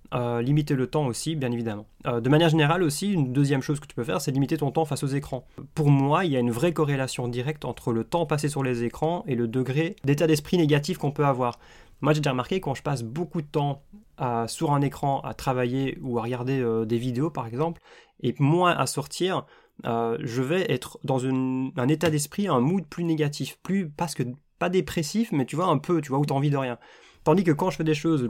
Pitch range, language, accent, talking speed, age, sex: 125-155 Hz, French, French, 250 wpm, 20-39, male